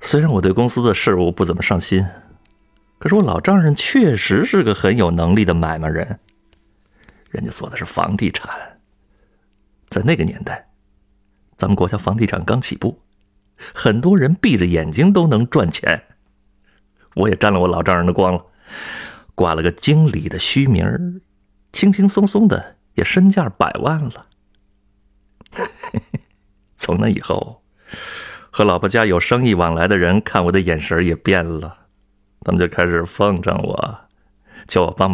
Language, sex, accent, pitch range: Chinese, male, native, 90-140 Hz